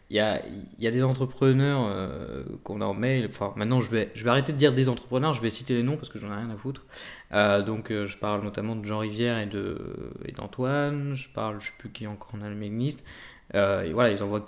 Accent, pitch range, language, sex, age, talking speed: French, 105-125 Hz, English, male, 20-39, 265 wpm